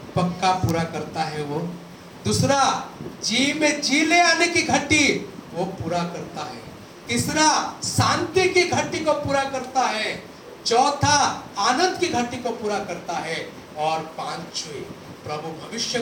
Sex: male